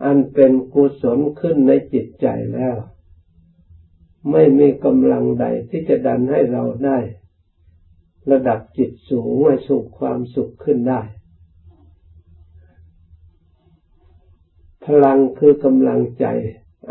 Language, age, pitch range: Thai, 60-79, 85-125 Hz